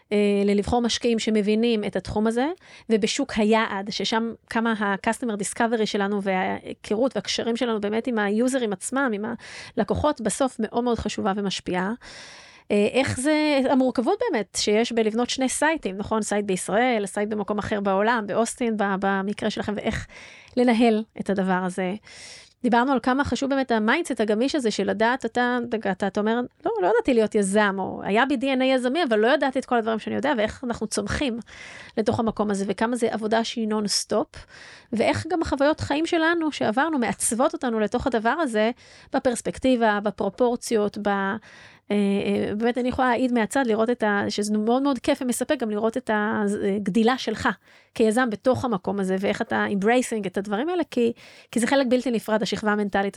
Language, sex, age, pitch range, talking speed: Hebrew, female, 30-49, 210-255 Hz, 165 wpm